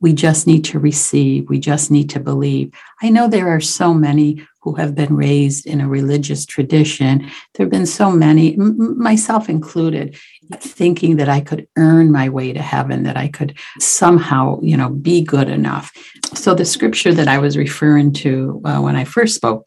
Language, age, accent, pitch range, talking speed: English, 60-79, American, 135-160 Hz, 190 wpm